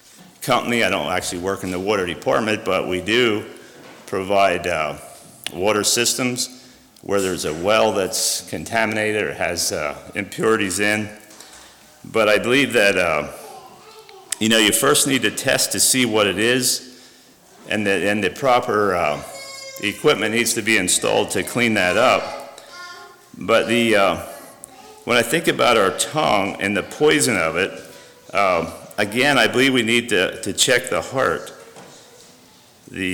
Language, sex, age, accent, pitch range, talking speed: English, male, 50-69, American, 95-125 Hz, 155 wpm